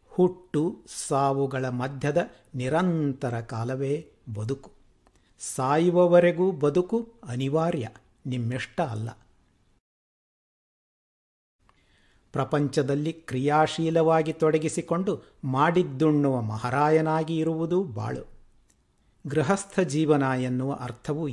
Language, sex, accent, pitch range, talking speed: Kannada, male, native, 125-160 Hz, 60 wpm